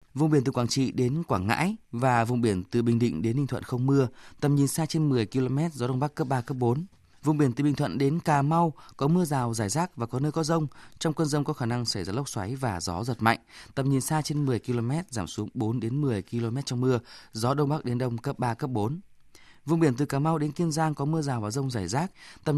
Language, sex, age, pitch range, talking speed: Vietnamese, male, 20-39, 120-150 Hz, 275 wpm